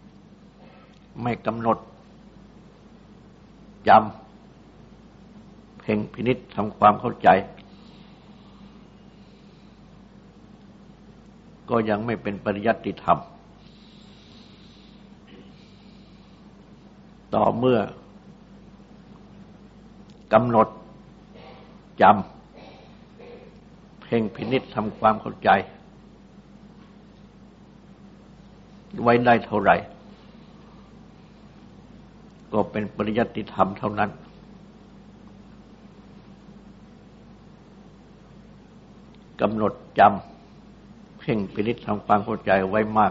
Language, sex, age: Thai, male, 60-79